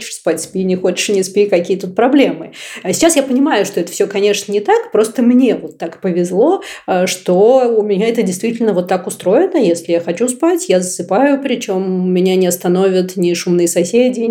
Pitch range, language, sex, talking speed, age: 185-245 Hz, Russian, female, 185 wpm, 30-49